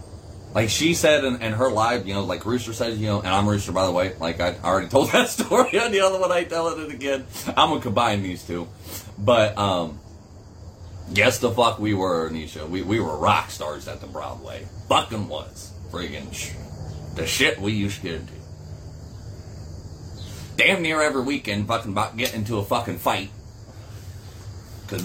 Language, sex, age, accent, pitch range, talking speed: English, male, 30-49, American, 90-110 Hz, 190 wpm